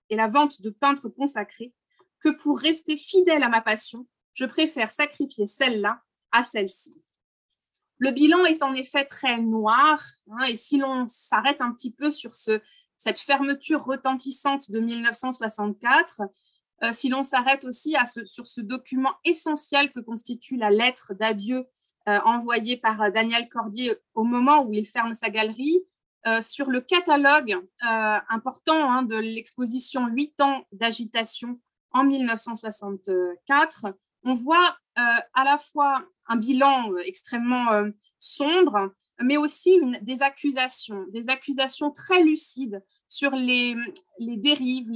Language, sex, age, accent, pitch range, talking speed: French, female, 20-39, French, 225-285 Hz, 145 wpm